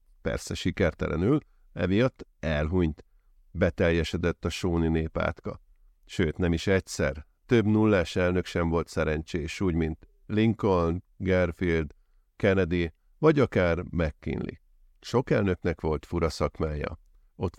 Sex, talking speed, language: male, 110 wpm, Hungarian